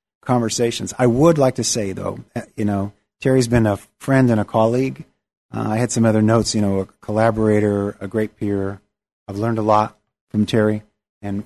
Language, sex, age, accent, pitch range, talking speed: English, male, 40-59, American, 100-115 Hz, 190 wpm